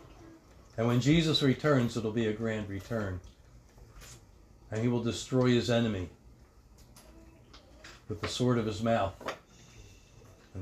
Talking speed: 130 wpm